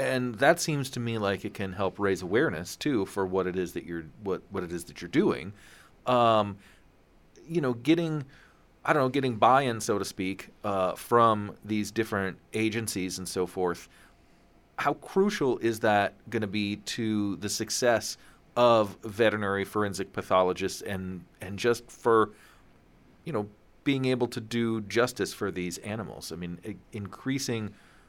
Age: 40-59